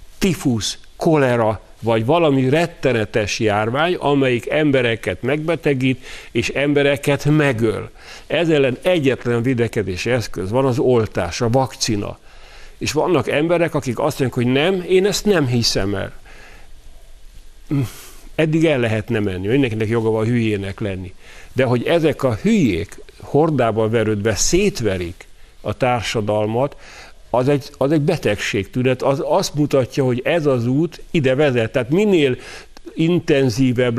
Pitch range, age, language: 115-145 Hz, 50-69, Hungarian